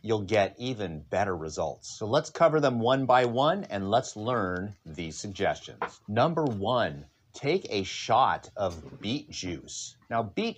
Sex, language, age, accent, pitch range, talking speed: male, English, 30-49, American, 95-120 Hz, 155 wpm